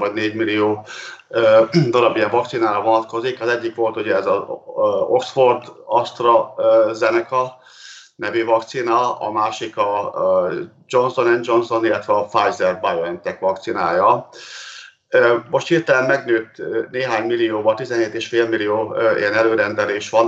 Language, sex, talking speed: Hungarian, male, 120 wpm